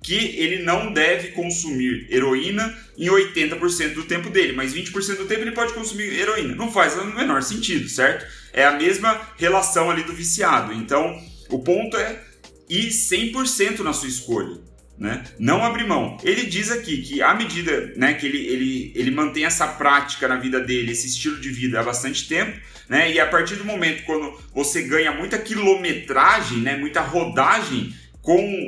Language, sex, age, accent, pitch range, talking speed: Portuguese, male, 30-49, Brazilian, 130-195 Hz, 175 wpm